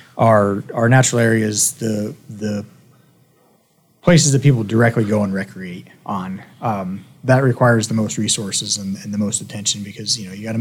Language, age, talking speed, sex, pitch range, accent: English, 30-49, 175 wpm, male, 105-130 Hz, American